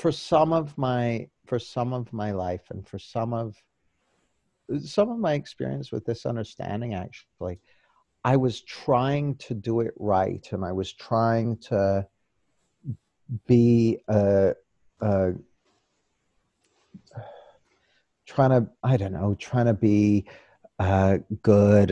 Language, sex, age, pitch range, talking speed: English, male, 50-69, 100-135 Hz, 130 wpm